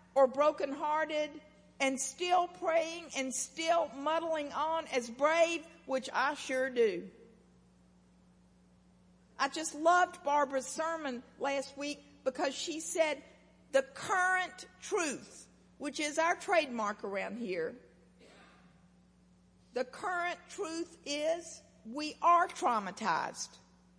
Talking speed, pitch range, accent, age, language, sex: 105 wpm, 235-320 Hz, American, 50-69, English, female